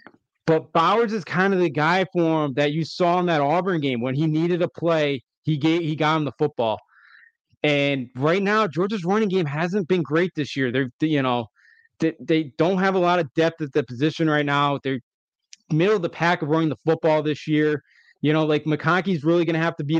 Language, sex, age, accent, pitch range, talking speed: English, male, 20-39, American, 140-175 Hz, 225 wpm